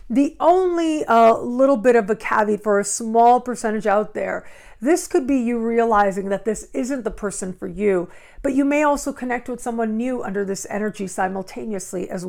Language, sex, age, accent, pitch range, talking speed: English, female, 50-69, American, 205-255 Hz, 190 wpm